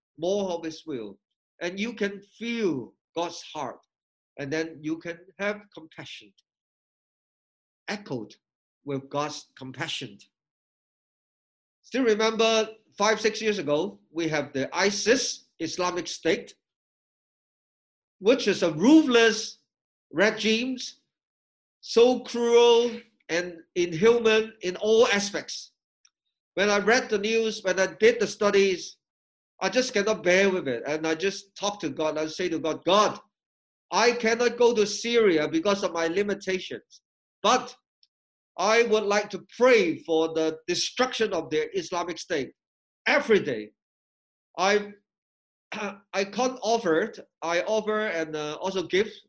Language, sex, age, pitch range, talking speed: English, male, 50-69, 165-220 Hz, 130 wpm